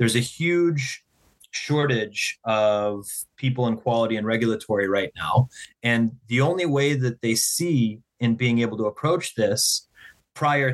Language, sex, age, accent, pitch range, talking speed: English, male, 30-49, American, 110-130 Hz, 145 wpm